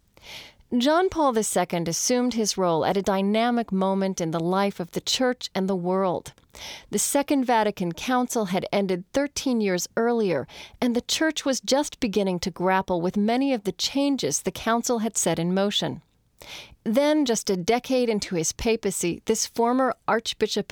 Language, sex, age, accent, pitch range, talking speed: English, female, 40-59, American, 190-250 Hz, 165 wpm